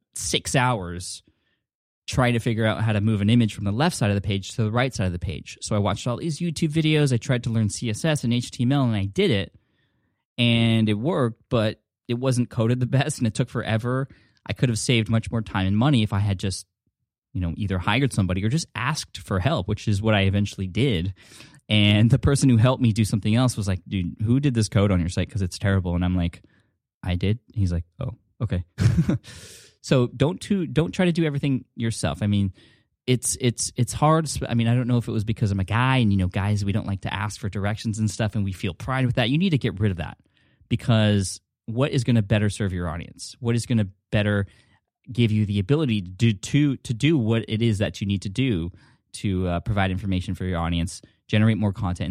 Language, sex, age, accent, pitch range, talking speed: English, male, 10-29, American, 100-125 Hz, 240 wpm